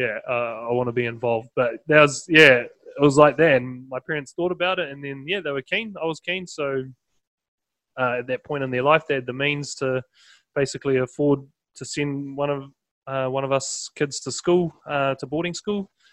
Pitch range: 125-145 Hz